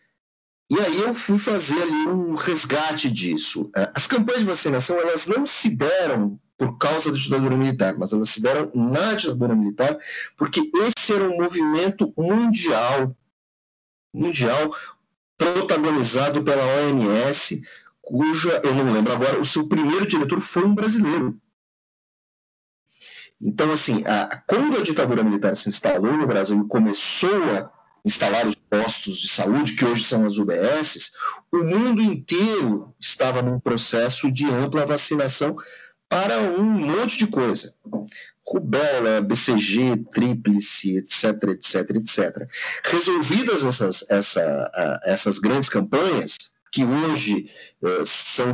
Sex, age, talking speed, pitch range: male, 40-59, 125 wpm, 110-175 Hz